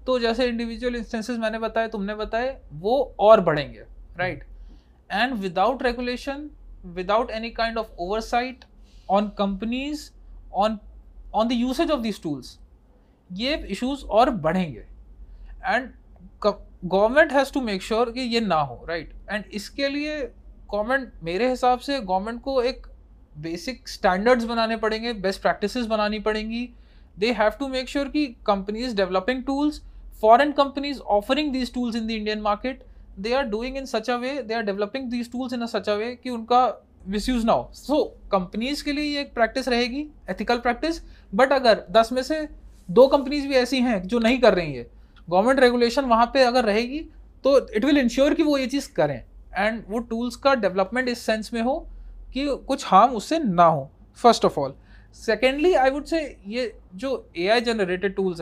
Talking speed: 170 wpm